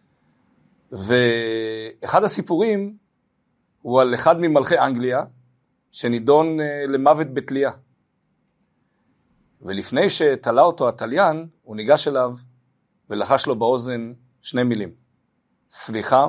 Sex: male